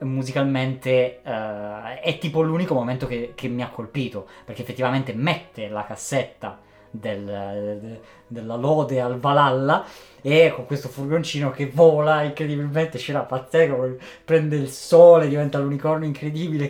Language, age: Italian, 20-39